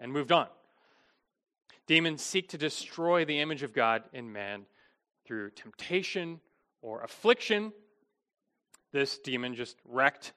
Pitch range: 125-185 Hz